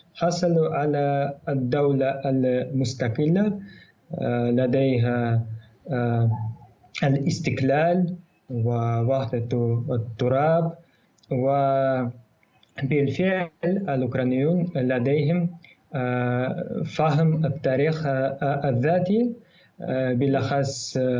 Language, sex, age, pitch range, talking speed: Arabic, male, 20-39, 125-155 Hz, 40 wpm